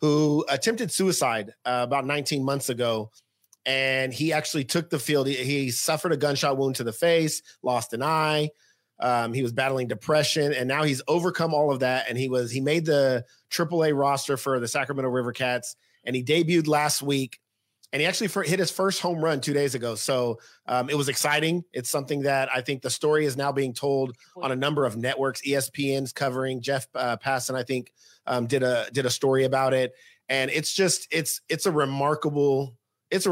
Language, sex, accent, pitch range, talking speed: English, male, American, 125-150 Hz, 200 wpm